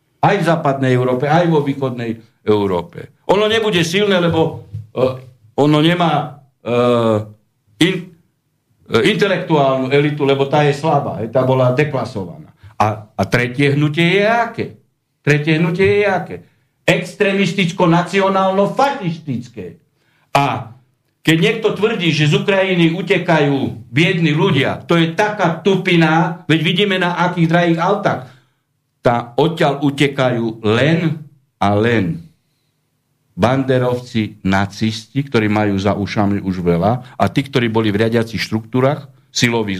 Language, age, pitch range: Slovak, 60-79, 125-160 Hz